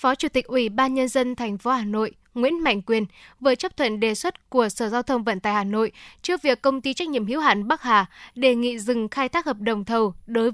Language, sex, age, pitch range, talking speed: Vietnamese, female, 10-29, 220-270 Hz, 260 wpm